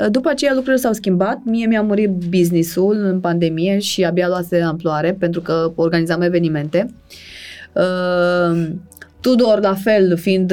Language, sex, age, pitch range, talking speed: Romanian, female, 20-39, 175-265 Hz, 140 wpm